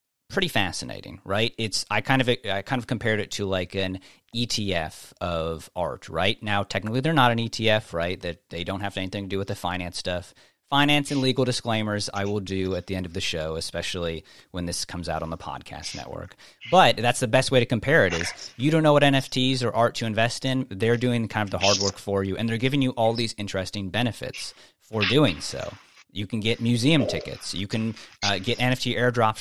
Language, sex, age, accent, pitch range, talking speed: English, male, 30-49, American, 95-120 Hz, 220 wpm